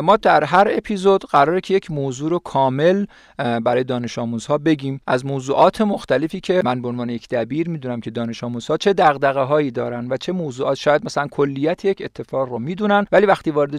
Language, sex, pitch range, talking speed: Persian, male, 125-180 Hz, 185 wpm